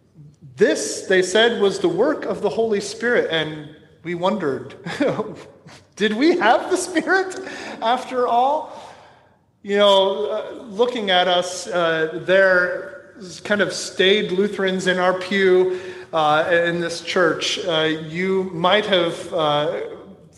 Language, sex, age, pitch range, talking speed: English, male, 30-49, 170-210 Hz, 125 wpm